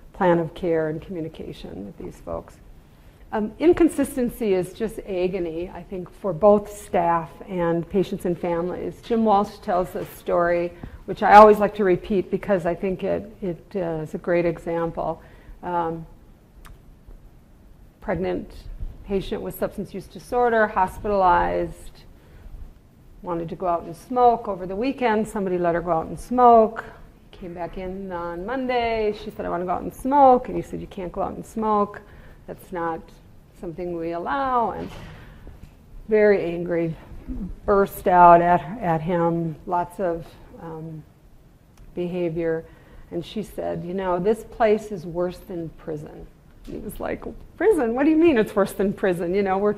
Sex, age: female, 50-69